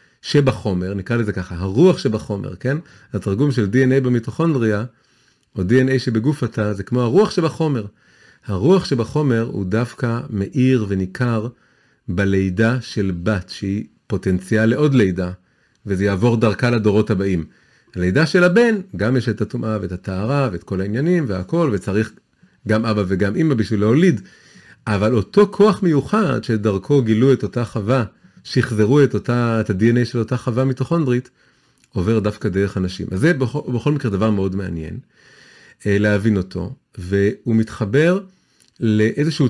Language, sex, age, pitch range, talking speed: Hebrew, male, 40-59, 100-135 Hz, 140 wpm